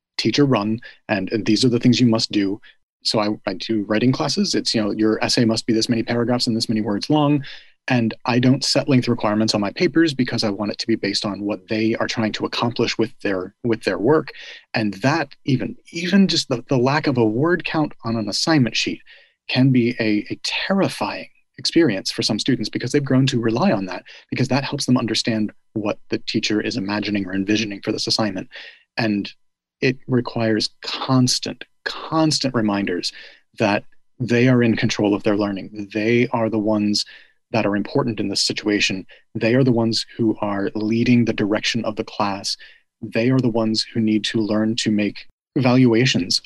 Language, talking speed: English, 200 wpm